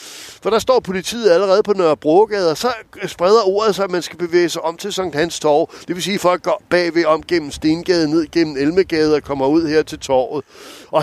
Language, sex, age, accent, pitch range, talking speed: Danish, male, 60-79, native, 170-215 Hz, 235 wpm